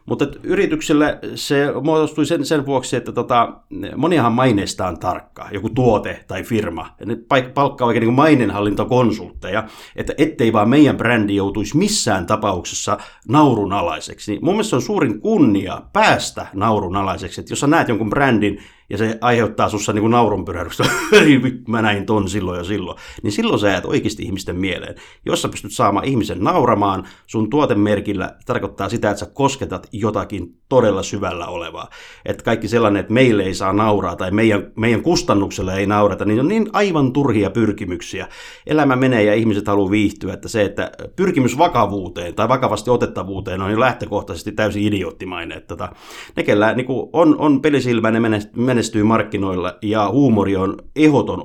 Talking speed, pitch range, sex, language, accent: 155 wpm, 100-125 Hz, male, Finnish, native